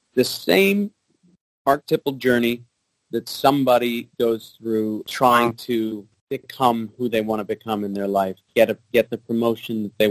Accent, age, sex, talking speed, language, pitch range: American, 30-49, male, 150 wpm, English, 105-115 Hz